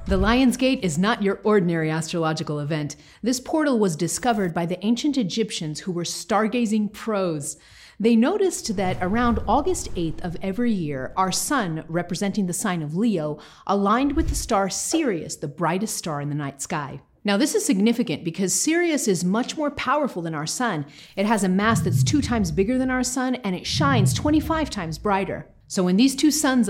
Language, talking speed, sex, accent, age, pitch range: English, 190 wpm, female, American, 40-59, 175-240 Hz